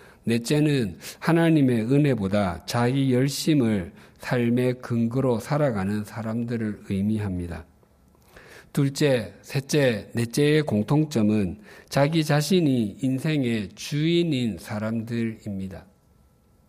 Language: Korean